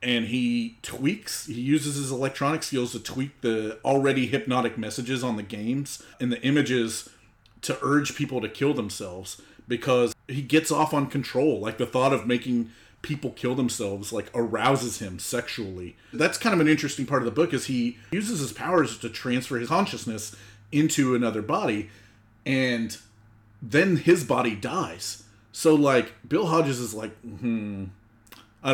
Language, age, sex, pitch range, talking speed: English, 30-49, male, 110-140 Hz, 165 wpm